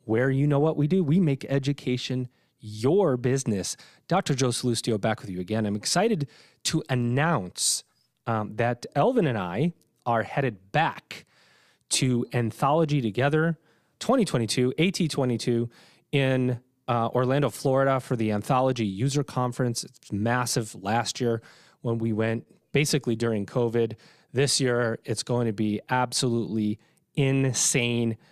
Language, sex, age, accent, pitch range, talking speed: English, male, 30-49, American, 115-140 Hz, 130 wpm